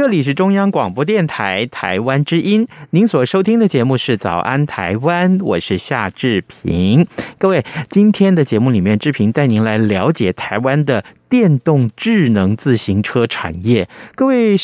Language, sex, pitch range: Chinese, male, 115-185 Hz